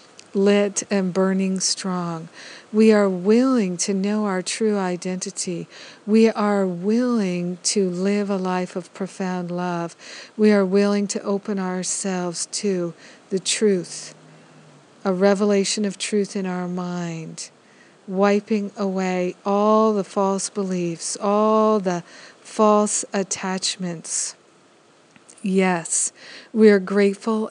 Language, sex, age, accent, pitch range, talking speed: English, female, 50-69, American, 180-205 Hz, 115 wpm